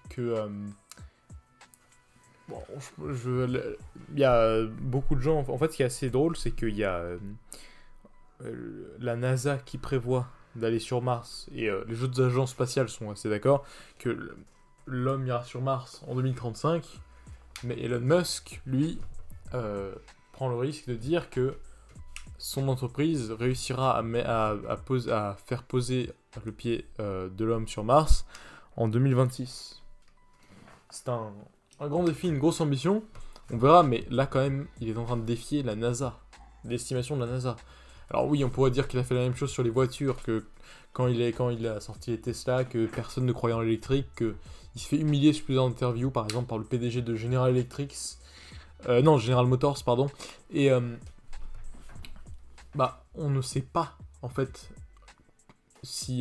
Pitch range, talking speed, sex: 115-135 Hz, 175 wpm, male